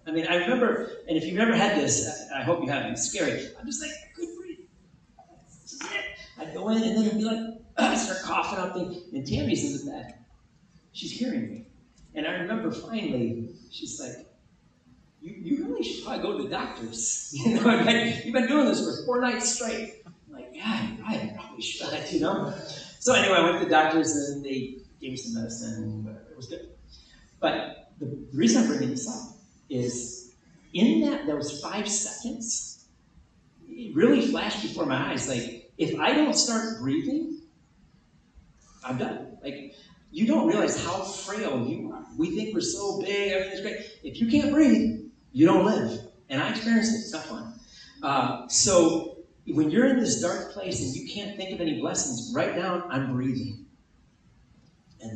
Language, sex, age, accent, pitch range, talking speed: English, male, 40-59, American, 160-245 Hz, 190 wpm